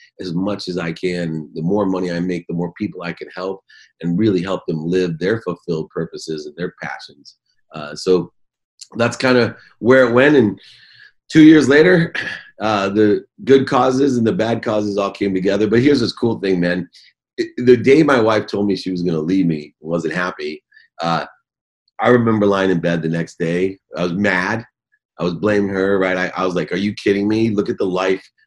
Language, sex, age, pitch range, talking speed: English, male, 30-49, 90-125 Hz, 210 wpm